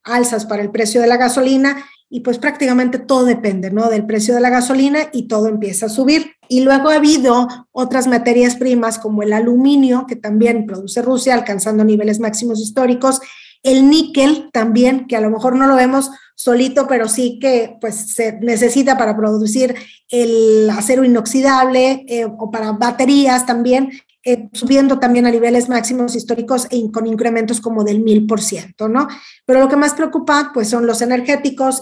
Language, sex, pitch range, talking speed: Spanish, female, 225-270 Hz, 175 wpm